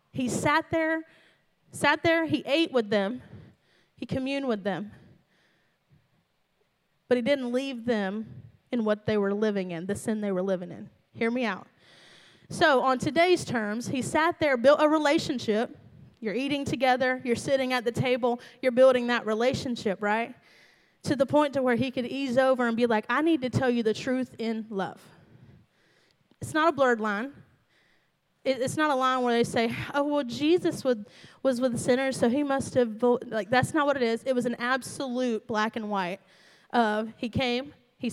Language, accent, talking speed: English, American, 185 wpm